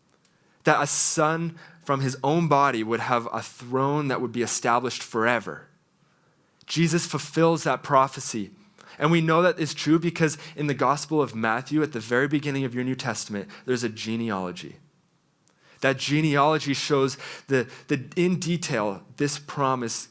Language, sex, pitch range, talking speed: English, male, 115-150 Hz, 155 wpm